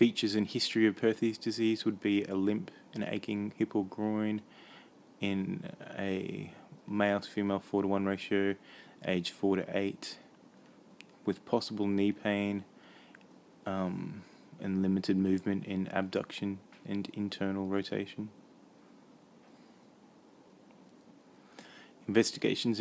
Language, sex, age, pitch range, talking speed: English, male, 20-39, 95-110 Hz, 110 wpm